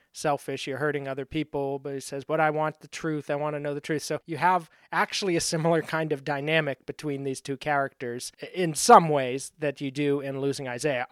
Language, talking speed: English, 220 wpm